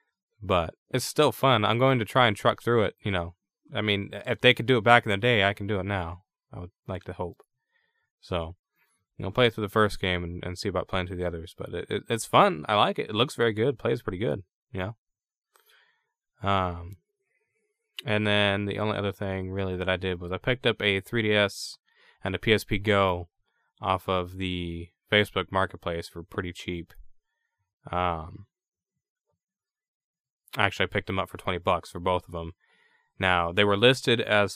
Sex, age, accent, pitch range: male, 20-39, American, 95-125 Hz